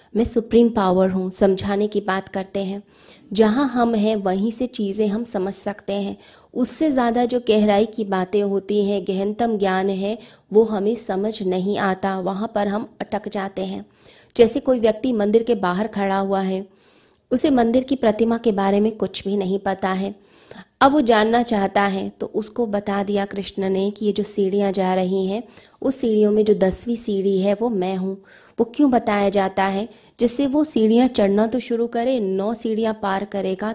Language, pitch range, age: Hindi, 195-230 Hz, 20-39